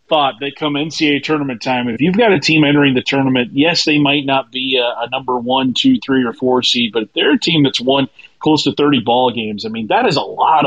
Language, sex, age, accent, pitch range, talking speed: English, male, 30-49, American, 125-150 Hz, 260 wpm